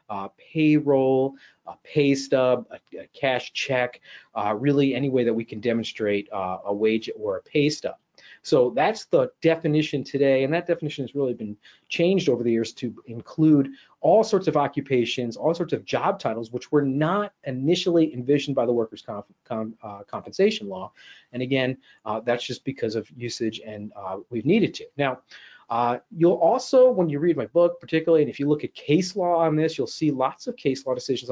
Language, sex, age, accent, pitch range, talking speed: English, male, 40-59, American, 120-160 Hz, 190 wpm